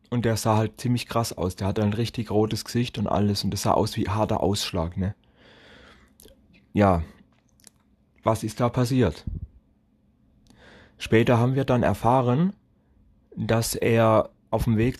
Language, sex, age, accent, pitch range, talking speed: German, male, 30-49, German, 105-125 Hz, 155 wpm